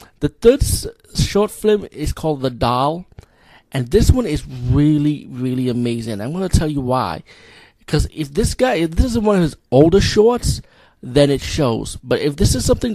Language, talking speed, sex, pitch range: English, 190 wpm, male, 120-150 Hz